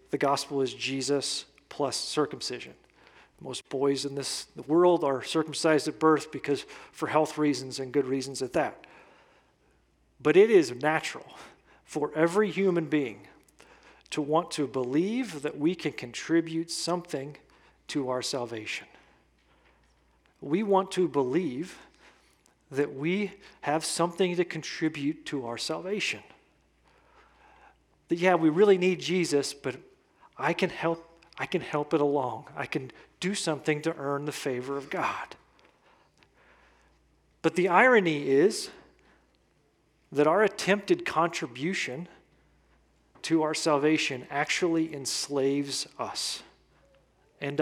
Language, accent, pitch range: English, American, 140-175 Hz